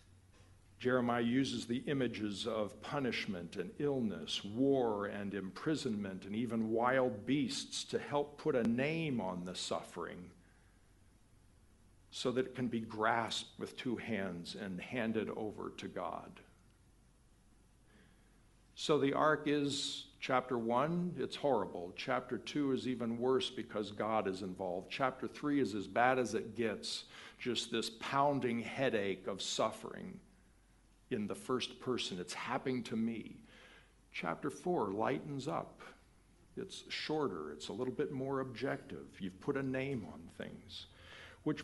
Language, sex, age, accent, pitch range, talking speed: English, male, 60-79, American, 100-140 Hz, 135 wpm